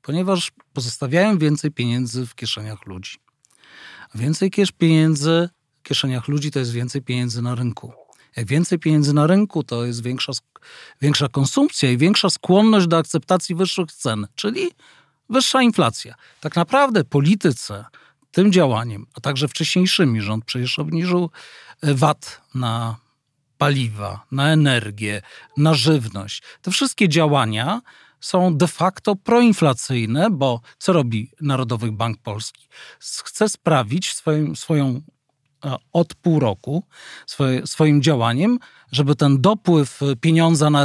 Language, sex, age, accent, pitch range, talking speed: Polish, male, 40-59, native, 130-180 Hz, 125 wpm